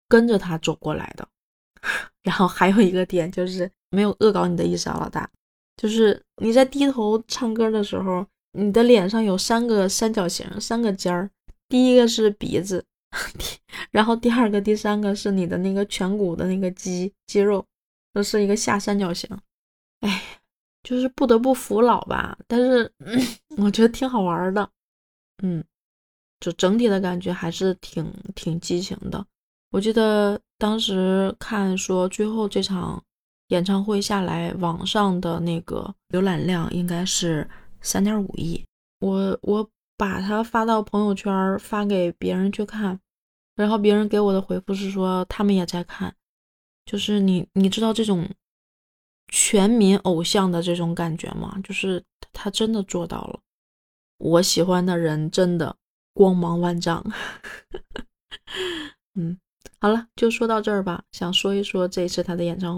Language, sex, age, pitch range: Chinese, female, 20-39, 180-215 Hz